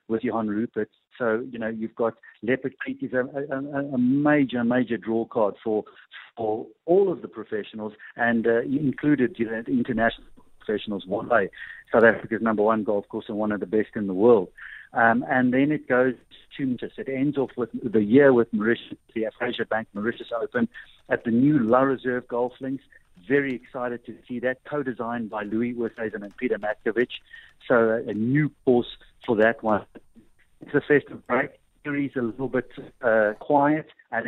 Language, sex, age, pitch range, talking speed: English, male, 50-69, 110-135 Hz, 185 wpm